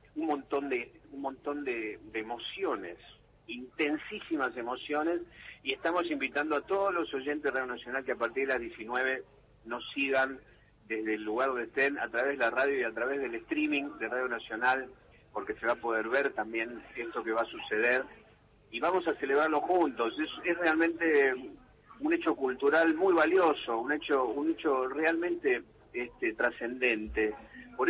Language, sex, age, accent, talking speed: Spanish, male, 40-59, Argentinian, 170 wpm